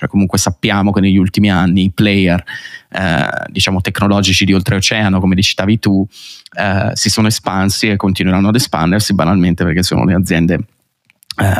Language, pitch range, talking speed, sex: Italian, 95-105 Hz, 160 wpm, male